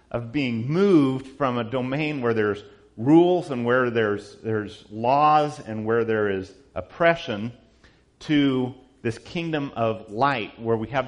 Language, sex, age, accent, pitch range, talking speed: English, male, 40-59, American, 105-135 Hz, 145 wpm